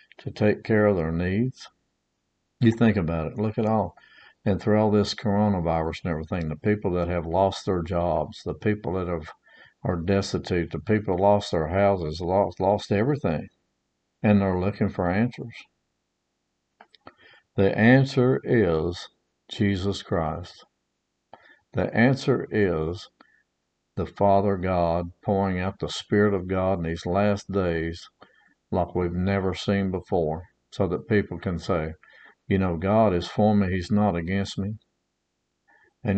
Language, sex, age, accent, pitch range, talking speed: English, male, 60-79, American, 90-110 Hz, 145 wpm